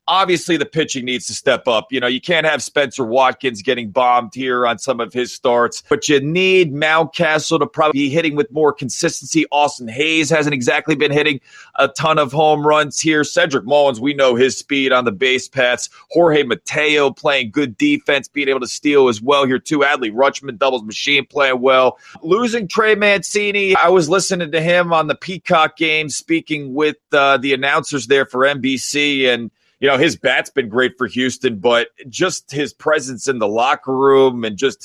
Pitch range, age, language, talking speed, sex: 135-165 Hz, 30-49, English, 195 wpm, male